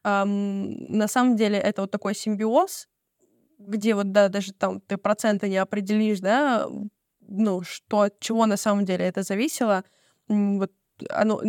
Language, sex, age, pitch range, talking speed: Russian, female, 20-39, 200-230 Hz, 150 wpm